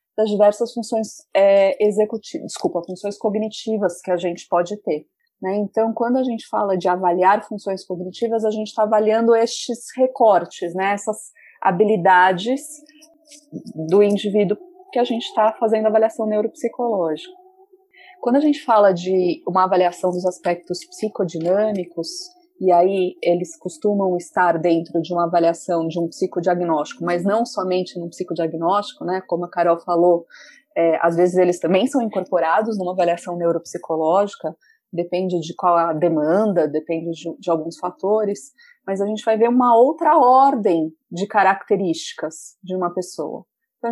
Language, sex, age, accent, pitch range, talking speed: Portuguese, female, 30-49, Brazilian, 175-230 Hz, 145 wpm